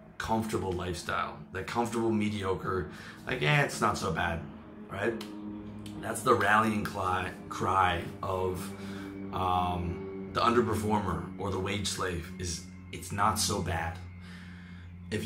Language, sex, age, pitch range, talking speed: English, male, 20-39, 95-115 Hz, 120 wpm